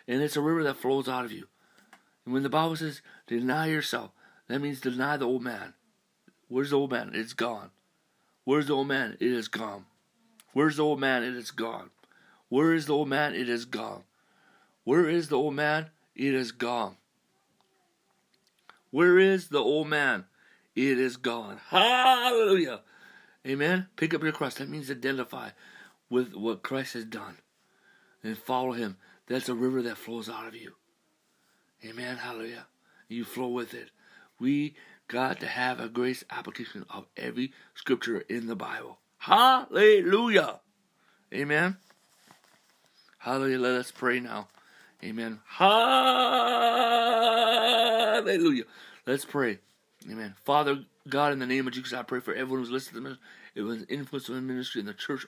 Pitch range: 125-155 Hz